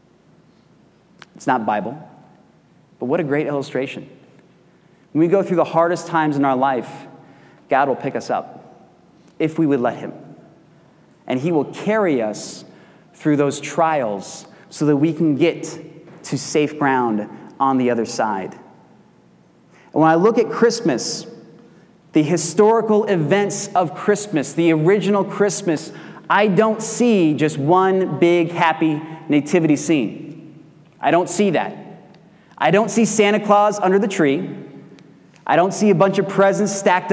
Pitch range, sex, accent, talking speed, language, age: 150-200 Hz, male, American, 145 wpm, English, 30-49